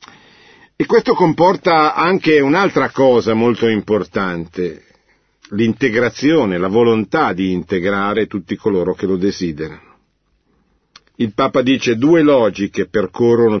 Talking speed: 110 wpm